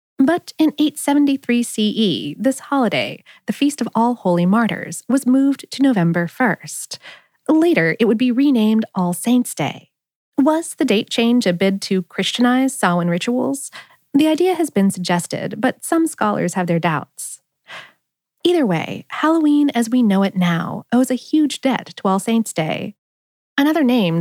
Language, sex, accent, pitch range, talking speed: English, female, American, 190-275 Hz, 160 wpm